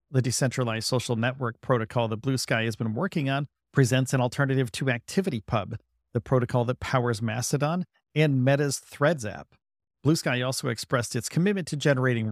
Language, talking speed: English, 165 wpm